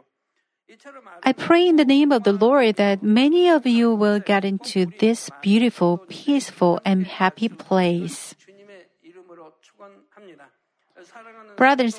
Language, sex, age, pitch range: Korean, female, 50-69, 195-255 Hz